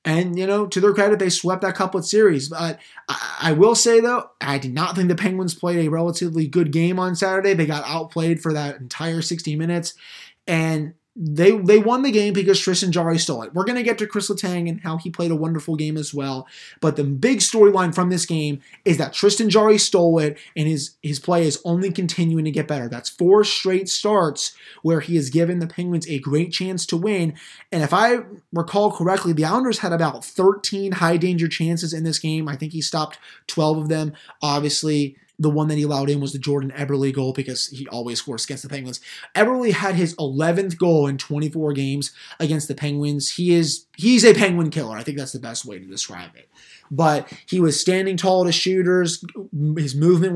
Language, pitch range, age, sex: English, 155-185 Hz, 20-39, male